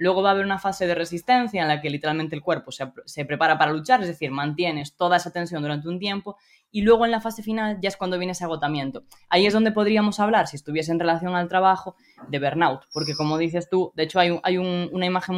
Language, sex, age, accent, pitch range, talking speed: Spanish, female, 10-29, Spanish, 160-185 Hz, 245 wpm